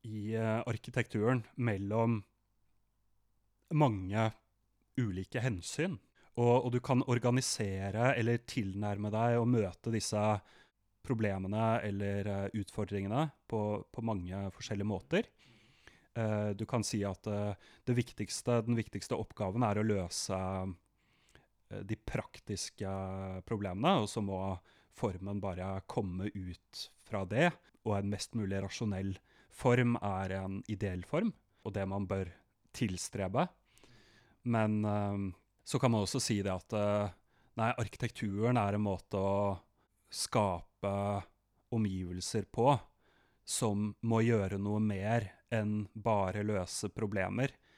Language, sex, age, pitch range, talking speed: English, male, 30-49, 100-115 Hz, 125 wpm